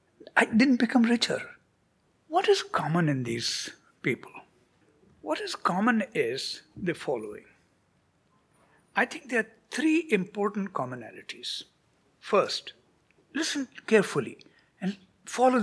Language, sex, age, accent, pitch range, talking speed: English, male, 60-79, Indian, 180-270 Hz, 110 wpm